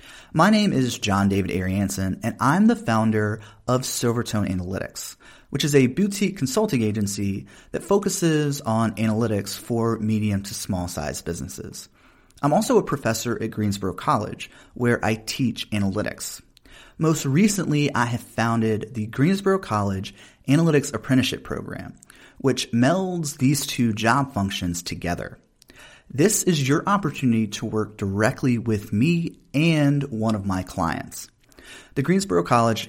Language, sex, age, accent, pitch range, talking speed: English, male, 30-49, American, 105-145 Hz, 135 wpm